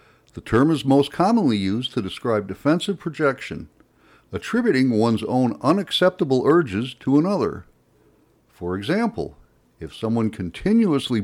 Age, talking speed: 60-79, 115 wpm